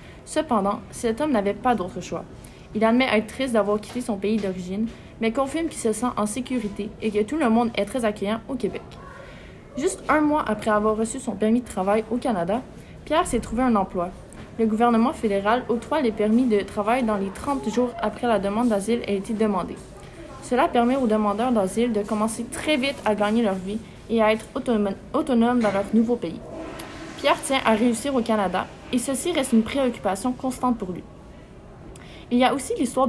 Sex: female